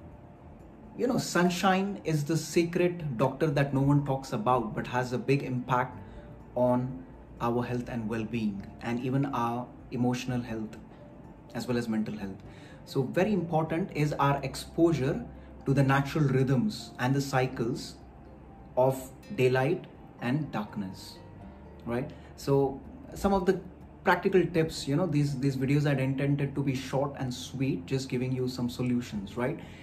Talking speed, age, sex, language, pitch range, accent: 150 wpm, 20-39, male, English, 125-150 Hz, Indian